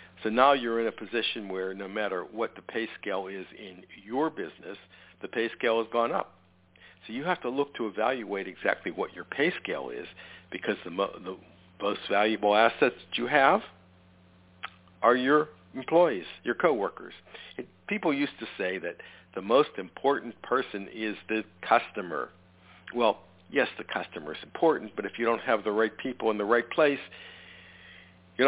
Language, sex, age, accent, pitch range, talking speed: English, male, 60-79, American, 90-120 Hz, 170 wpm